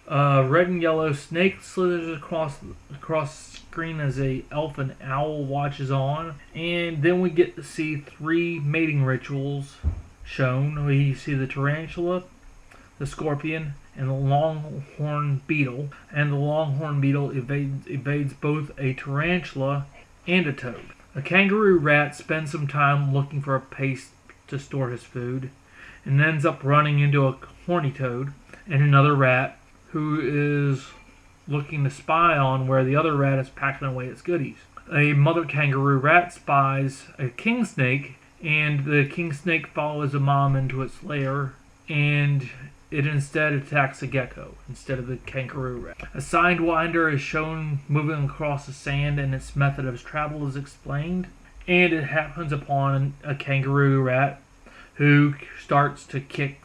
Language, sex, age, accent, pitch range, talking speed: English, male, 30-49, American, 135-155 Hz, 150 wpm